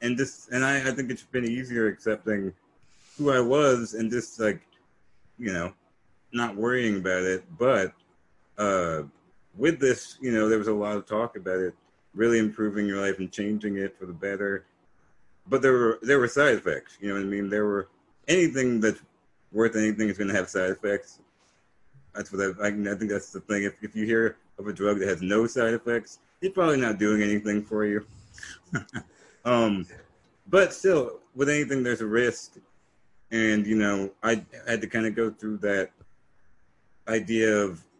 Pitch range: 95-115 Hz